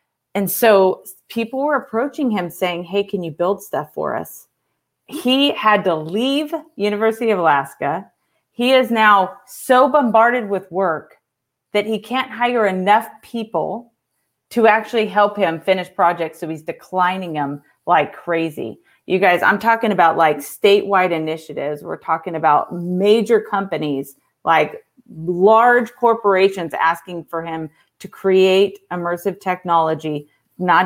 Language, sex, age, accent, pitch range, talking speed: English, female, 30-49, American, 170-230 Hz, 135 wpm